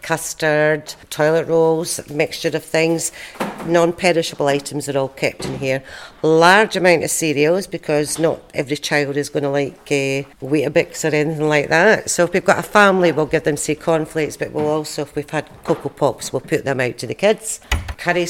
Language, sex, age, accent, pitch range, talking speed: English, female, 50-69, British, 145-170 Hz, 190 wpm